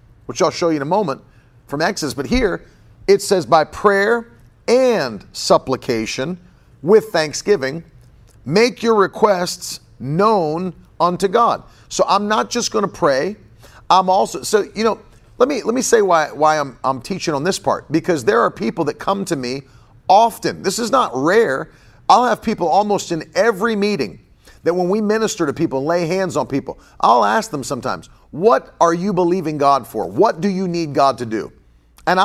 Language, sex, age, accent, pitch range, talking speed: English, male, 40-59, American, 140-195 Hz, 185 wpm